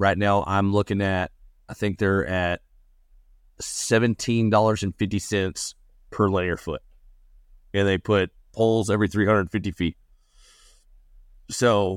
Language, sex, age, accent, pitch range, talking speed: English, male, 30-49, American, 90-110 Hz, 105 wpm